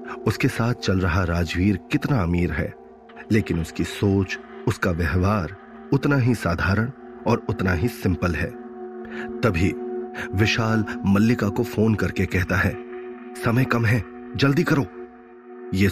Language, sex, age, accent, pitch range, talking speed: Hindi, male, 30-49, native, 95-120 Hz, 130 wpm